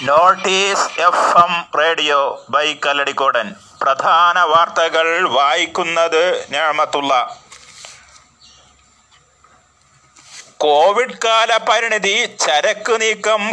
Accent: native